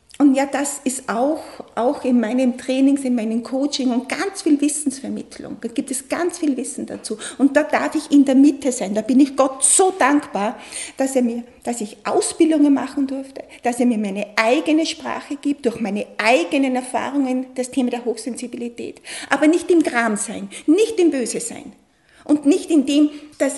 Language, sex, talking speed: German, female, 190 wpm